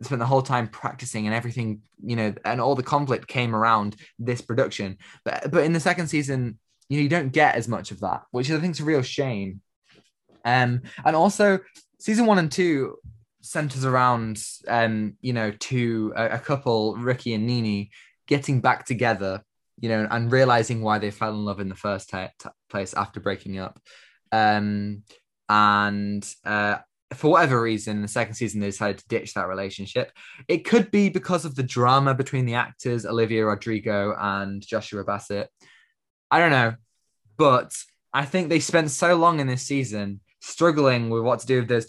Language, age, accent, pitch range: English, 20-39, British, 105-140 Hz